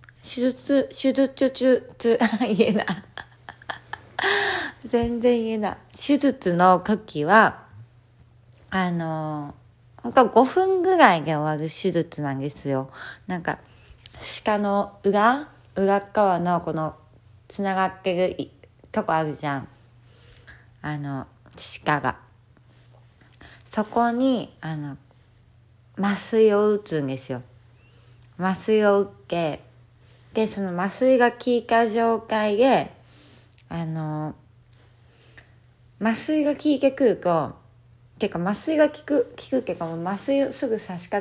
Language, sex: Japanese, female